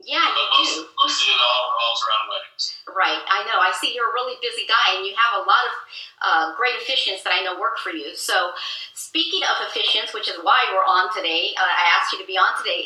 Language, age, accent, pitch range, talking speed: English, 40-59, American, 195-280 Hz, 210 wpm